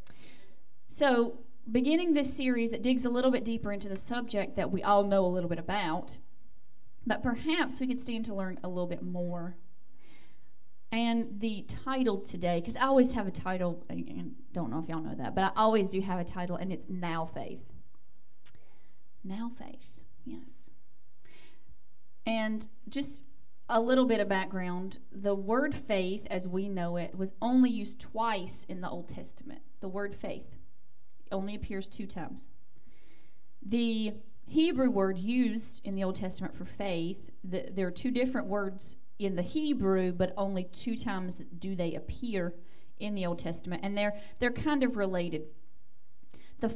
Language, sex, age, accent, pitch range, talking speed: English, female, 30-49, American, 185-235 Hz, 165 wpm